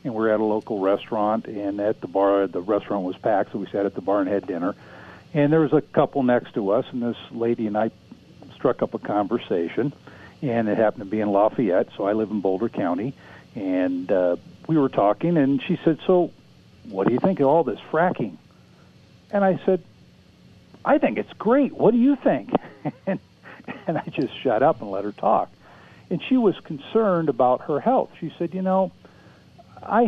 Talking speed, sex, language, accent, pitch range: 205 wpm, male, English, American, 105-155 Hz